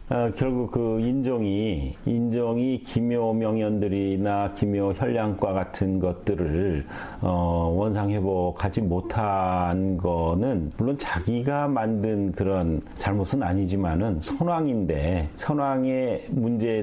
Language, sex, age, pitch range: Korean, male, 40-59, 95-120 Hz